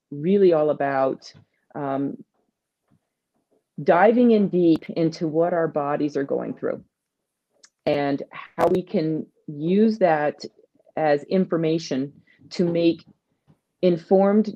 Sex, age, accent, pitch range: female, 40-59, American, 145-180 Hz